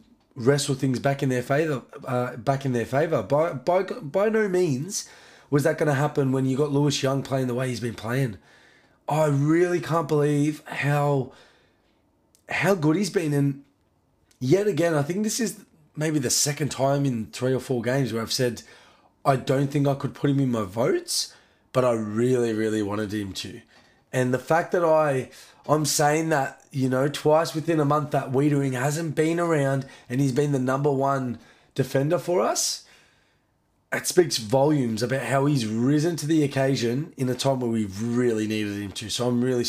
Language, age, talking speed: English, 20-39, 190 wpm